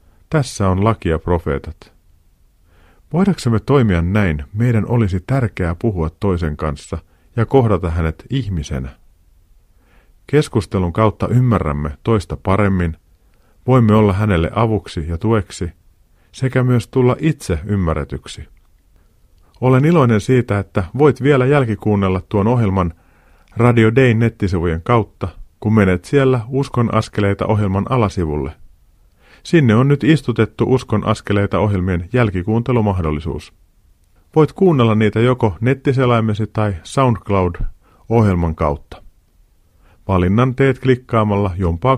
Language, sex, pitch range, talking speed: Finnish, male, 85-120 Hz, 105 wpm